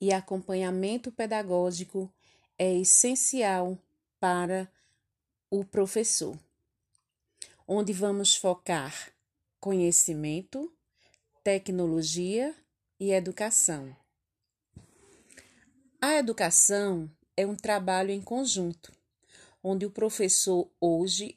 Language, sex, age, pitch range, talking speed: Portuguese, female, 30-49, 175-220 Hz, 75 wpm